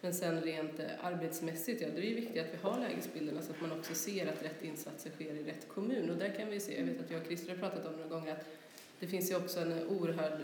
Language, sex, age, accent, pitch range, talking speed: Swedish, female, 30-49, native, 155-180 Hz, 270 wpm